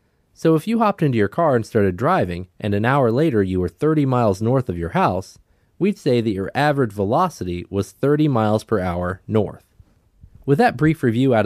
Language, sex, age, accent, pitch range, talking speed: English, male, 20-39, American, 100-145 Hz, 205 wpm